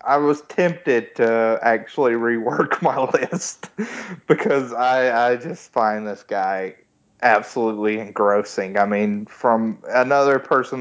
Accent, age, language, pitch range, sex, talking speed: American, 30-49, English, 115-130 Hz, male, 120 wpm